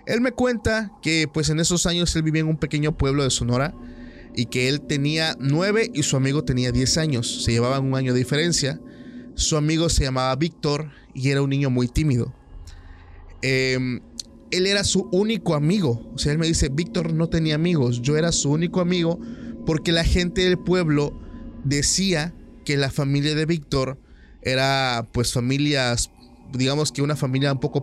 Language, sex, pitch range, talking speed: Spanish, male, 130-175 Hz, 180 wpm